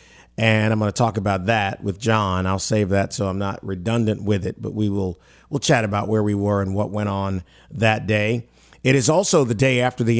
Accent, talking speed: American, 235 wpm